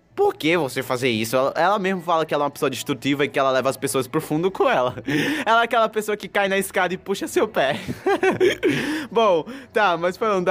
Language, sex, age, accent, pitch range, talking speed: Portuguese, male, 20-39, Brazilian, 145-215 Hz, 235 wpm